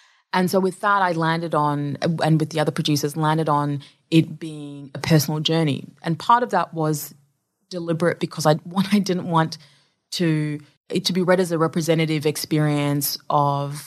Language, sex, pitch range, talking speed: English, female, 145-170 Hz, 175 wpm